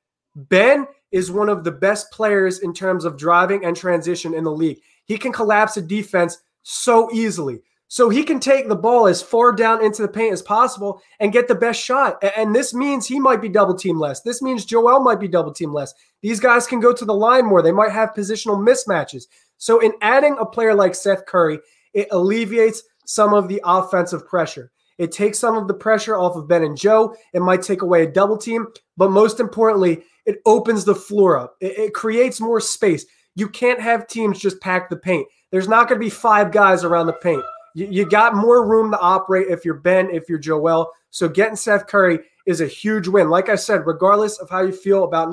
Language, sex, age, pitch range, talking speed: English, male, 20-39, 180-225 Hz, 220 wpm